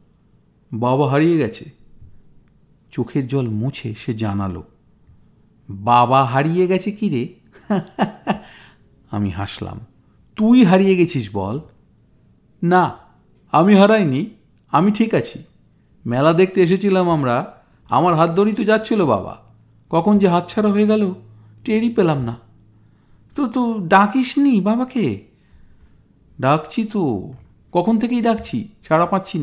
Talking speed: 110 wpm